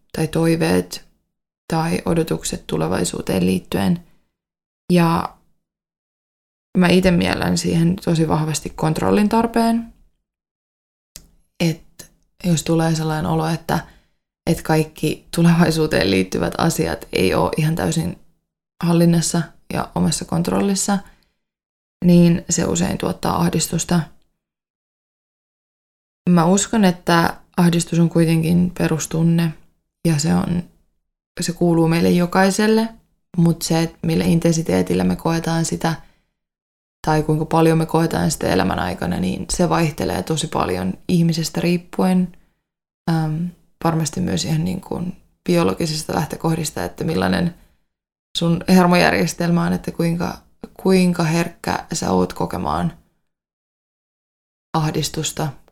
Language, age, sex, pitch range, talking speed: Finnish, 20-39, female, 160-175 Hz, 100 wpm